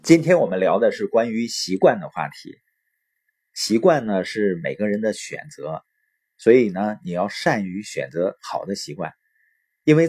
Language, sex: Chinese, male